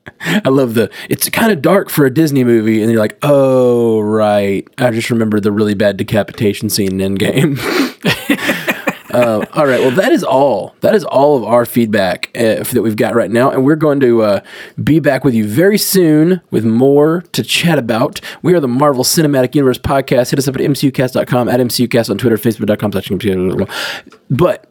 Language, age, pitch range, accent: English, 20-39, 110-145 Hz, American